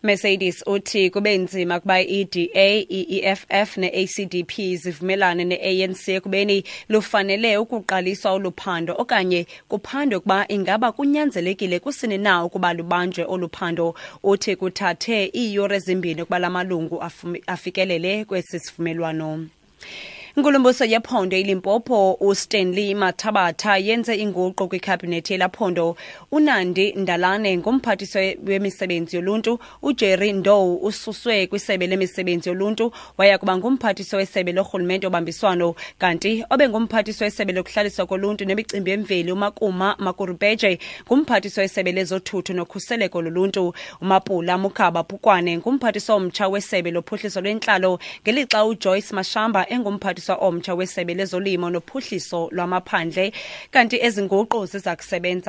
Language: English